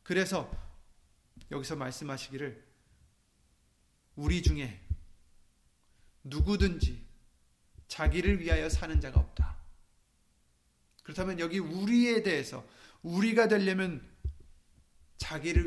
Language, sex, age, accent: Korean, male, 30-49, native